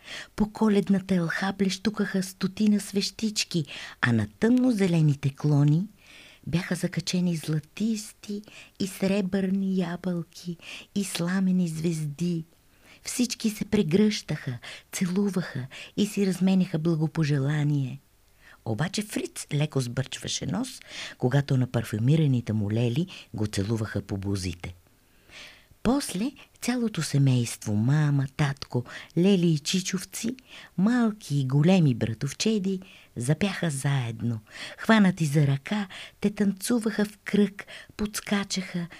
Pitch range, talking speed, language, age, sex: 125-195 Hz, 95 wpm, Bulgarian, 50-69, female